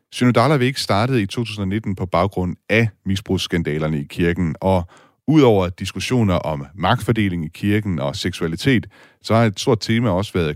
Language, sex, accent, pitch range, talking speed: Danish, male, native, 85-115 Hz, 155 wpm